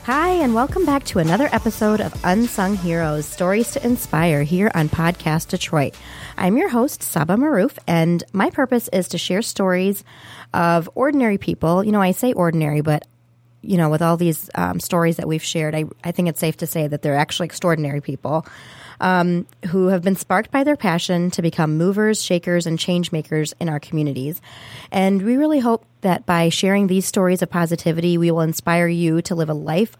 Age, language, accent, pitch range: 30-49, English, American, 155-185 Hz